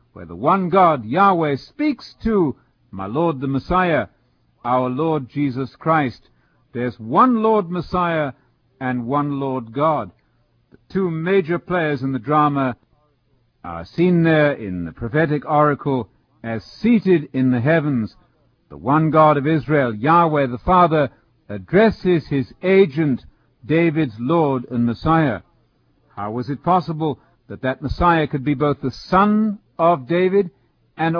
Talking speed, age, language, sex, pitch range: 140 wpm, 50-69, English, male, 130-170 Hz